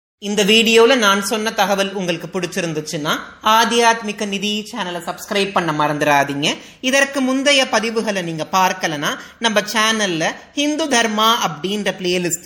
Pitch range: 185-250 Hz